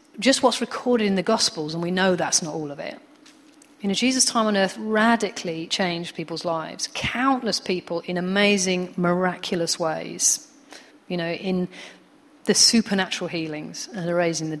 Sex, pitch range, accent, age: female, 180-245 Hz, British, 40-59